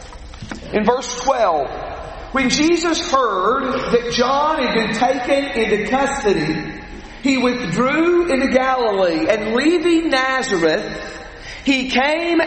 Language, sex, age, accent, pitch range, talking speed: English, male, 50-69, American, 235-290 Hz, 105 wpm